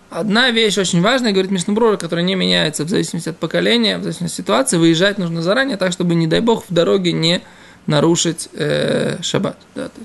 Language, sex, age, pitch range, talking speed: Russian, male, 20-39, 155-210 Hz, 205 wpm